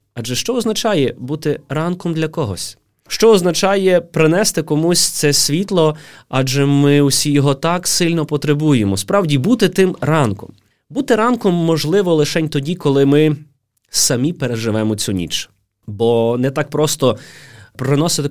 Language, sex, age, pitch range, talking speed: Ukrainian, male, 20-39, 135-170 Hz, 130 wpm